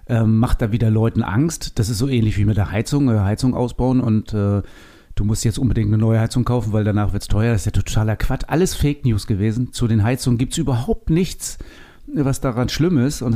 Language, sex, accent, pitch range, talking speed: German, male, German, 110-130 Hz, 230 wpm